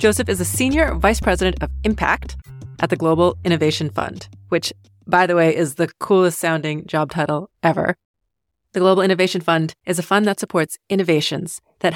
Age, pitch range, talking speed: 30-49, 160-200 Hz, 175 wpm